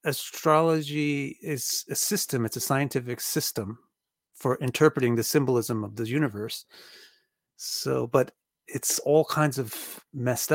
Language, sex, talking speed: English, male, 125 wpm